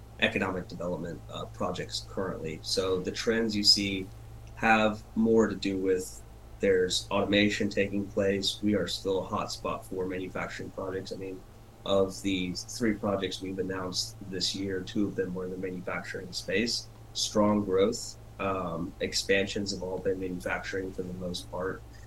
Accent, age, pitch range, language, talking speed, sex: American, 30-49, 90-110 Hz, English, 160 wpm, male